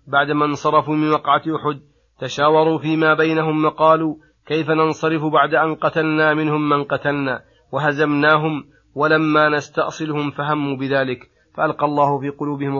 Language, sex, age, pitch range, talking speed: Arabic, male, 30-49, 140-160 Hz, 120 wpm